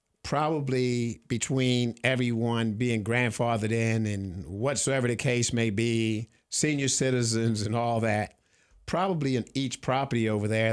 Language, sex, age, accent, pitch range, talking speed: English, male, 50-69, American, 110-125 Hz, 130 wpm